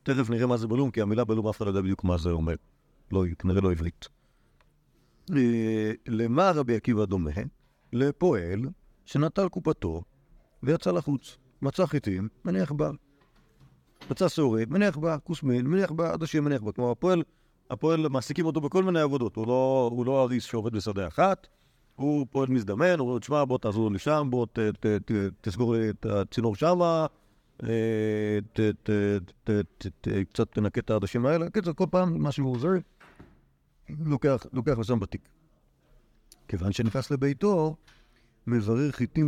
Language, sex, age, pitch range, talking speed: Hebrew, male, 50-69, 105-150 Hz, 140 wpm